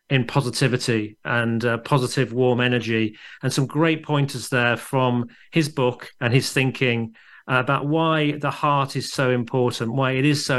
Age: 40-59